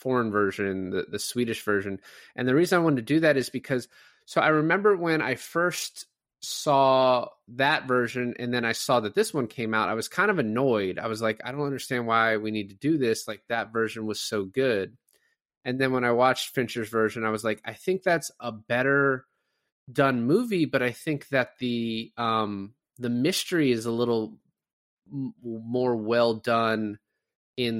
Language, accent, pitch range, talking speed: English, American, 110-135 Hz, 195 wpm